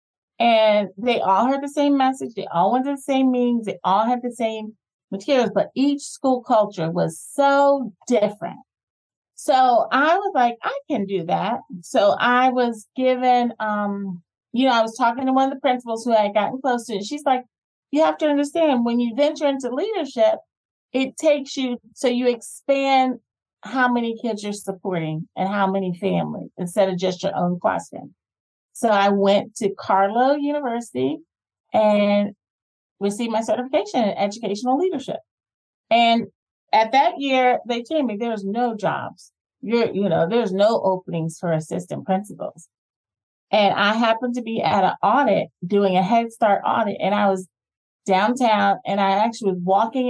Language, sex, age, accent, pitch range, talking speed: English, female, 30-49, American, 200-265 Hz, 170 wpm